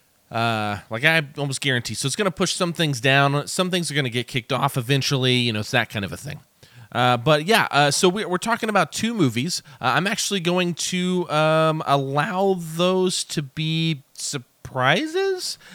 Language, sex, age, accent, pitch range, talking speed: English, male, 30-49, American, 125-165 Hz, 200 wpm